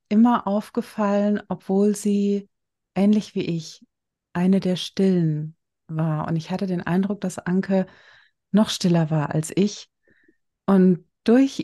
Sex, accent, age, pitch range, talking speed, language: female, German, 30-49, 170-200 Hz, 130 wpm, German